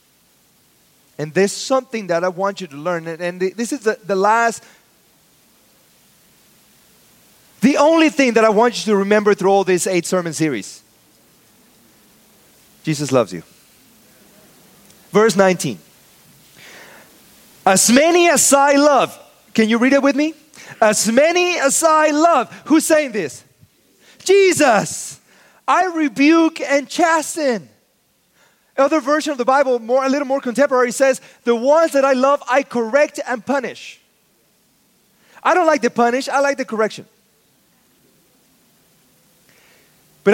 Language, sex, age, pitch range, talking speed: English, male, 30-49, 200-280 Hz, 130 wpm